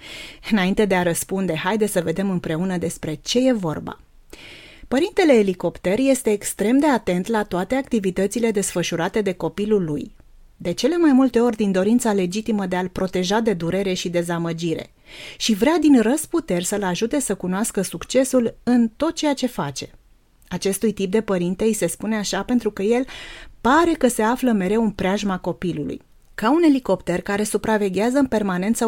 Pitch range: 180-230 Hz